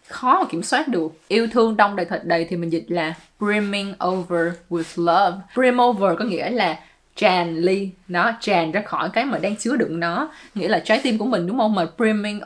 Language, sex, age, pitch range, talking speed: English, female, 20-39, 180-235 Hz, 220 wpm